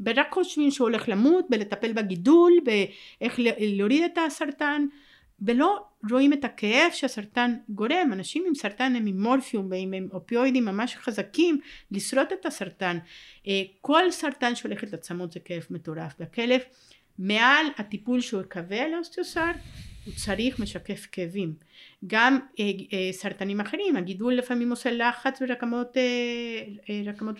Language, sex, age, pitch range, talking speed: Hebrew, female, 50-69, 200-280 Hz, 125 wpm